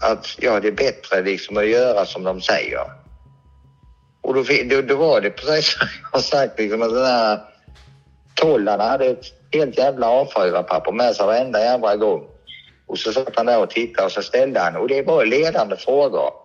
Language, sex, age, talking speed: Swedish, male, 60-79, 195 wpm